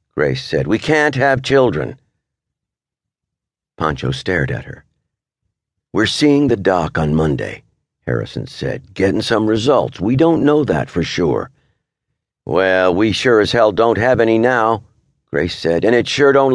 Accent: American